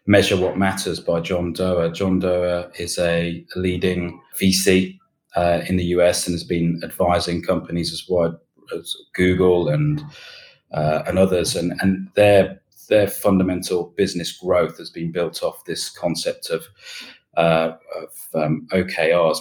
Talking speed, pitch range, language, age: 145 wpm, 85-95 Hz, English, 30-49